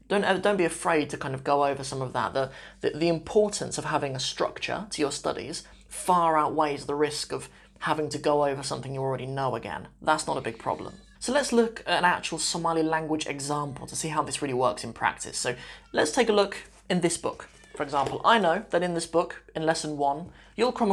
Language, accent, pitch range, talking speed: English, British, 140-170 Hz, 230 wpm